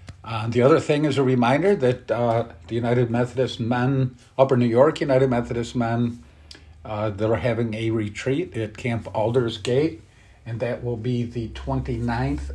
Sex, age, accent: male, 50-69, American